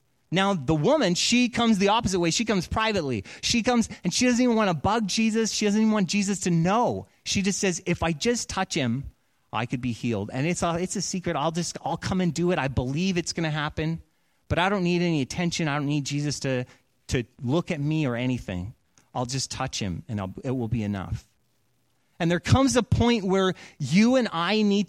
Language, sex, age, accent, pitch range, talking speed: English, male, 30-49, American, 115-180 Hz, 230 wpm